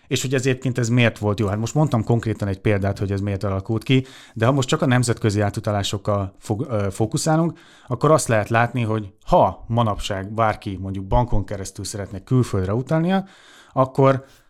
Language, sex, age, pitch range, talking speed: Hungarian, male, 30-49, 105-130 Hz, 175 wpm